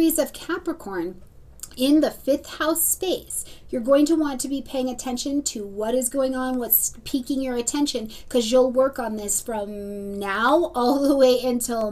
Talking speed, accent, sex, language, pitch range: 175 wpm, American, female, English, 235-305 Hz